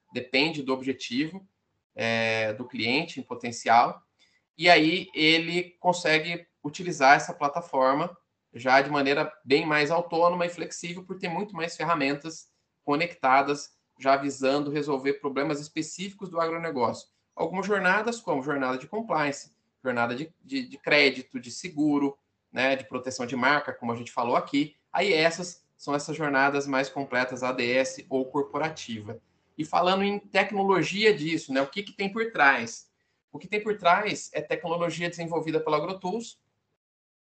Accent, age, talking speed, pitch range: Brazilian, 20-39, 145 wpm, 135-180 Hz